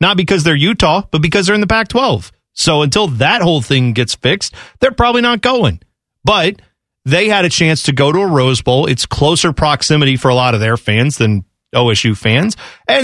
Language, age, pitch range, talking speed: English, 30-49, 125-180 Hz, 205 wpm